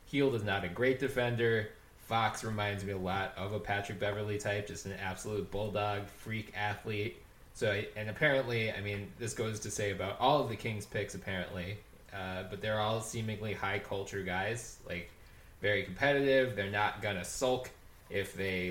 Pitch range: 100-115 Hz